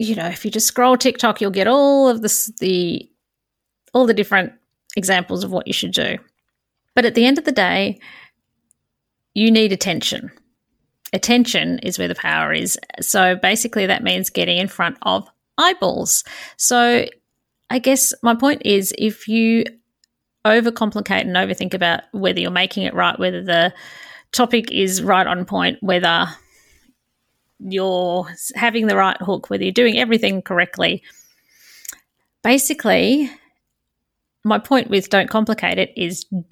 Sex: female